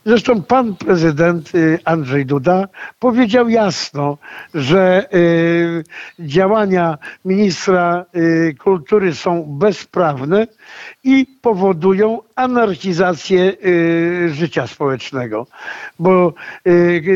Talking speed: 65 wpm